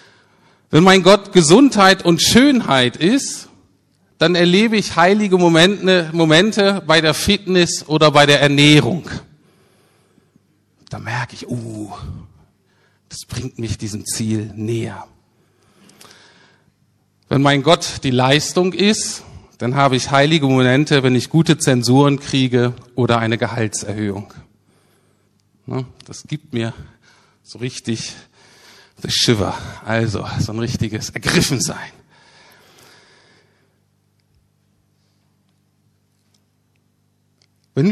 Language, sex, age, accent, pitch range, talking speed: German, male, 50-69, German, 115-165 Hz, 100 wpm